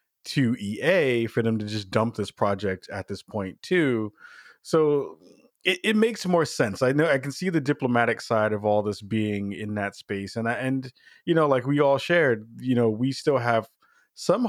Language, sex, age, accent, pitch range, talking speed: English, male, 20-39, American, 105-125 Hz, 205 wpm